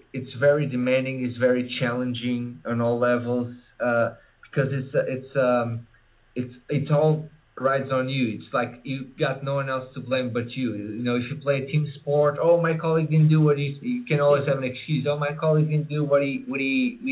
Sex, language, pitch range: male, English, 120-140 Hz